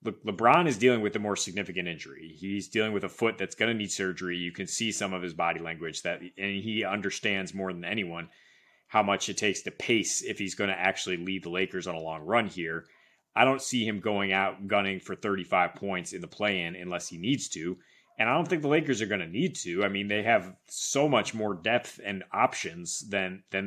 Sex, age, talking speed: male, 30-49, 235 wpm